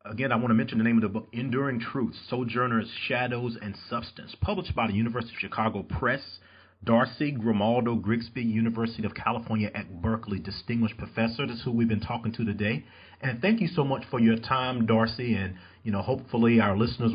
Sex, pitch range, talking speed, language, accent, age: male, 100-120 Hz, 195 wpm, English, American, 40-59